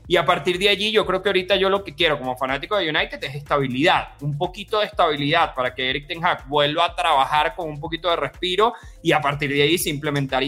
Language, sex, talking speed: Spanish, male, 245 wpm